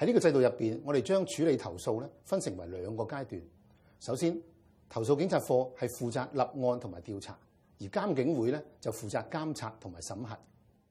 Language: Chinese